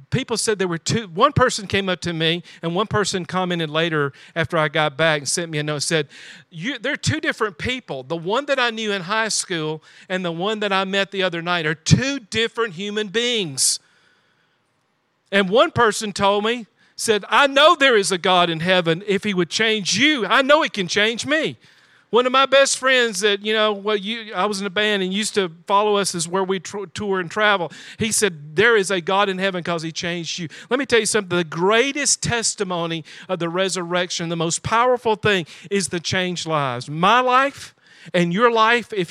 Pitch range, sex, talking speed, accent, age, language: 175-225 Hz, male, 220 wpm, American, 50-69, English